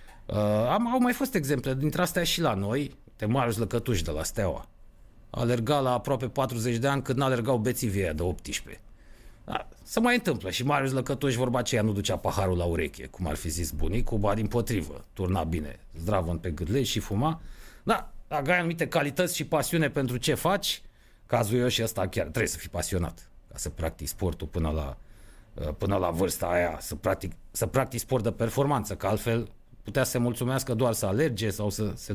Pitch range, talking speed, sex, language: 100-160 Hz, 195 wpm, male, Romanian